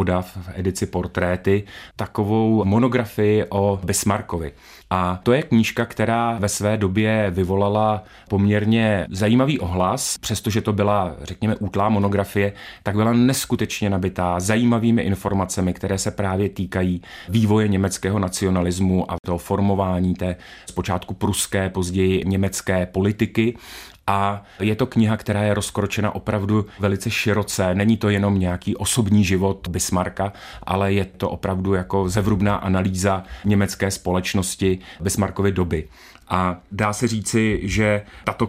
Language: Czech